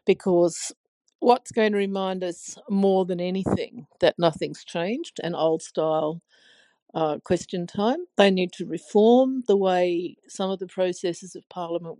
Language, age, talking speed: English, 50-69, 140 wpm